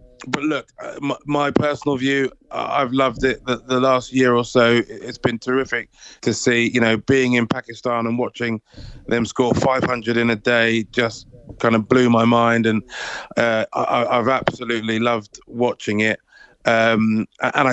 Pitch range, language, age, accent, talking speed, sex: 115-125 Hz, English, 30-49, British, 155 wpm, male